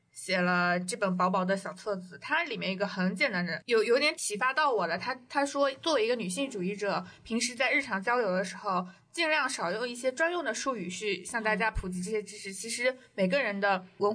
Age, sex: 20-39, female